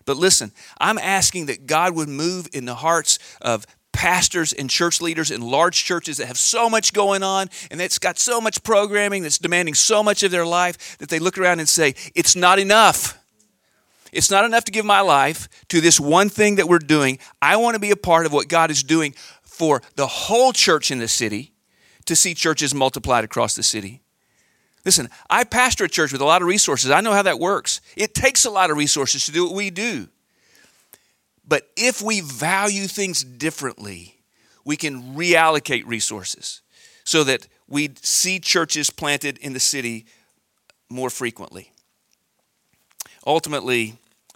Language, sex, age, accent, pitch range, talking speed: English, male, 40-59, American, 130-190 Hz, 180 wpm